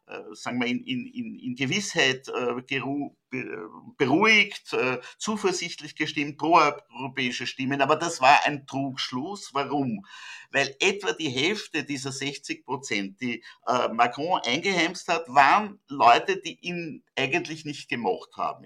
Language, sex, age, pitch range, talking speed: German, male, 50-69, 135-205 Hz, 130 wpm